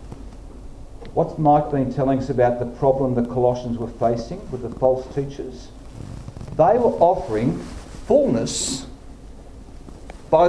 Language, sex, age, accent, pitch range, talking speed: English, male, 50-69, Australian, 120-180 Hz, 120 wpm